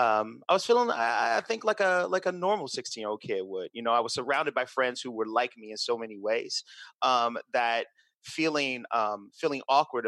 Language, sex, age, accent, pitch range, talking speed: English, male, 30-49, American, 115-175 Hz, 225 wpm